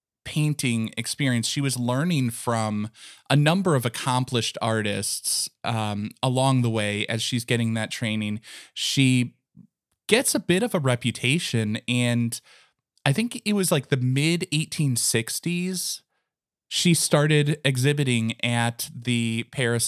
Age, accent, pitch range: 20-39, American, 115-150 Hz